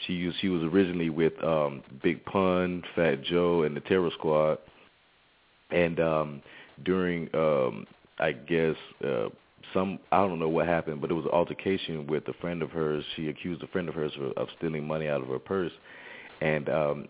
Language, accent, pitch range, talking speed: English, American, 75-85 Hz, 185 wpm